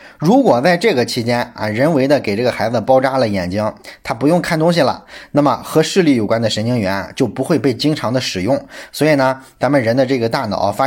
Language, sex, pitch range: Chinese, male, 110-145 Hz